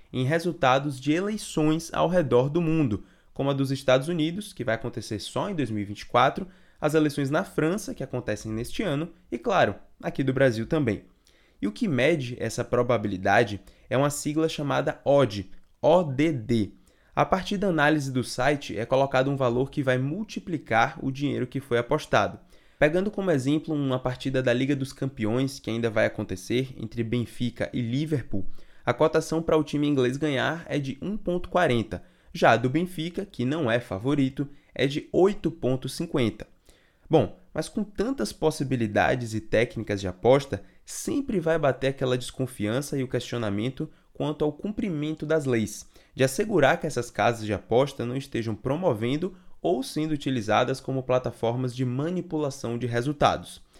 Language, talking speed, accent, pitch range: Portuguese, 160 wpm, Brazilian, 120-155 Hz